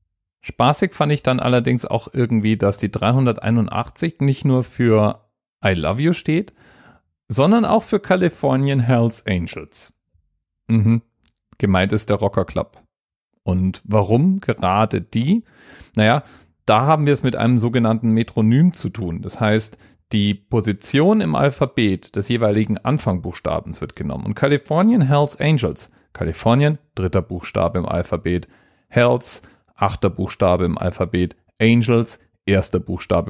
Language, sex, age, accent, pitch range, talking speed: German, male, 40-59, German, 95-125 Hz, 130 wpm